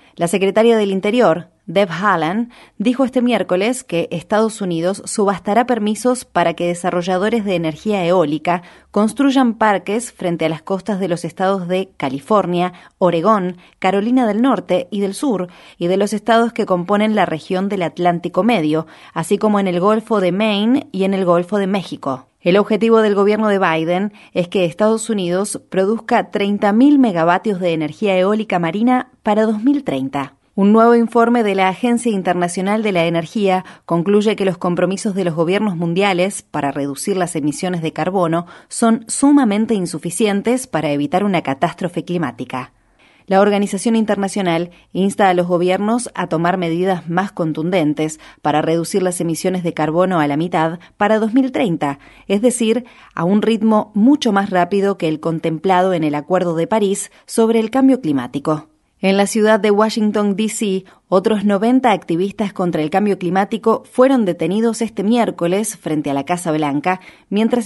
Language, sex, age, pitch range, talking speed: Spanish, female, 30-49, 170-220 Hz, 160 wpm